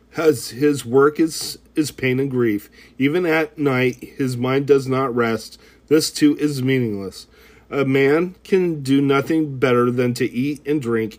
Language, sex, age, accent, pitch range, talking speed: English, male, 40-59, American, 120-150 Hz, 165 wpm